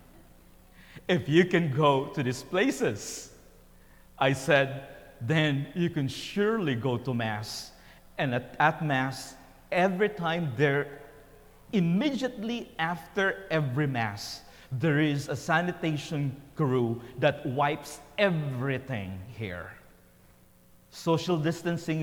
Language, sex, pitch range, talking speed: English, male, 115-160 Hz, 105 wpm